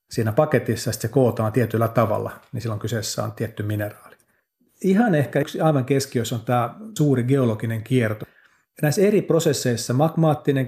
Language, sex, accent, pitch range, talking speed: Finnish, male, native, 115-140 Hz, 145 wpm